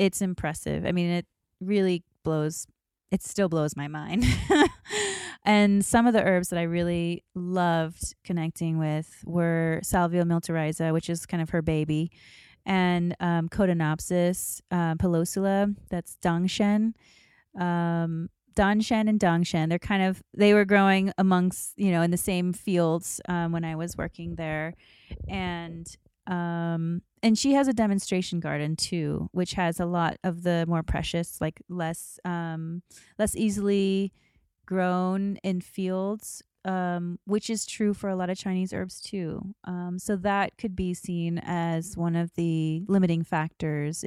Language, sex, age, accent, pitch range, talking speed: English, female, 30-49, American, 165-195 Hz, 150 wpm